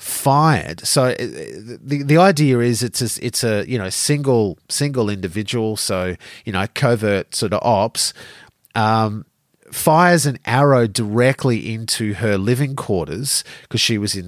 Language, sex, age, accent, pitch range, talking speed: English, male, 30-49, Australian, 100-125 Hz, 145 wpm